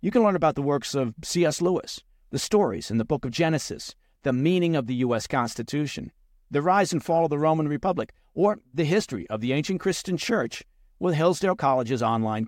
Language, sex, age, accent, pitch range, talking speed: English, male, 50-69, American, 115-165 Hz, 200 wpm